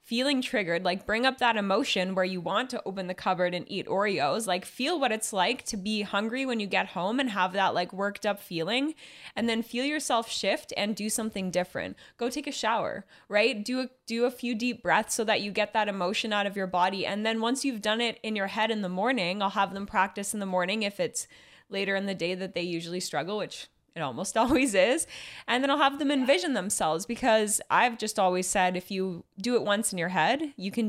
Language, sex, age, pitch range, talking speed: English, female, 10-29, 190-235 Hz, 235 wpm